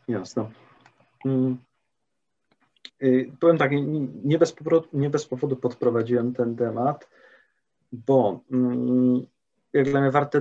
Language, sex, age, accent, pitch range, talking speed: Polish, male, 30-49, native, 120-135 Hz, 100 wpm